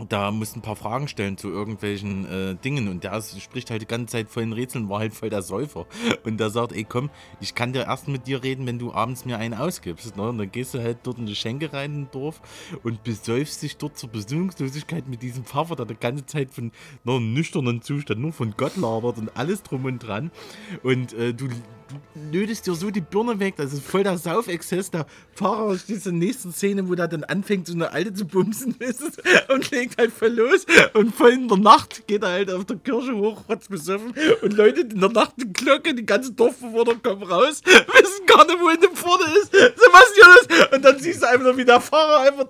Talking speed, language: 235 wpm, German